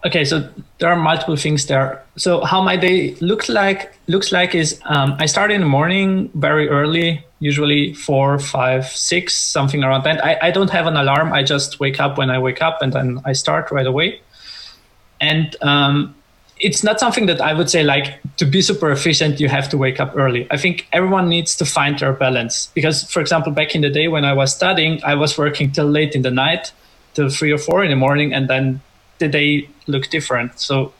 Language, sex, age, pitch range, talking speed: English, male, 20-39, 135-165 Hz, 215 wpm